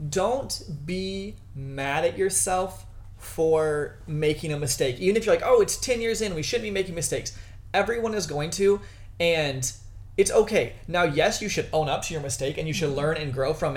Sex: male